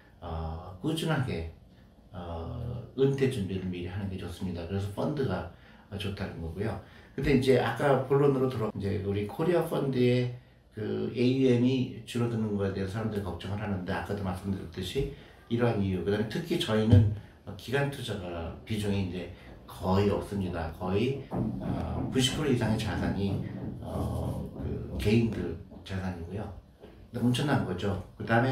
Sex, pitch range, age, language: male, 95-120 Hz, 60-79, Korean